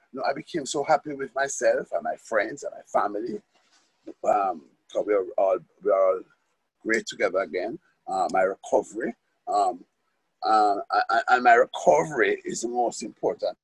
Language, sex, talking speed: English, male, 155 wpm